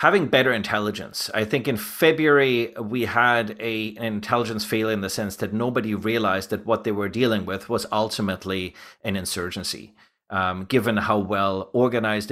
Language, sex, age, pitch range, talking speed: English, male, 30-49, 100-120 Hz, 160 wpm